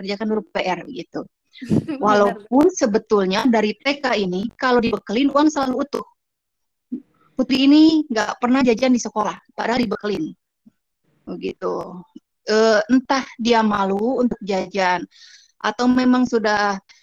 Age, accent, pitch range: 20-39, native, 205-260 Hz